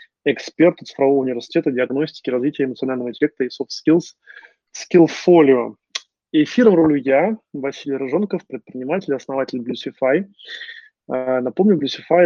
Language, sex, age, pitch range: Russian, male, 20-39, 130-180 Hz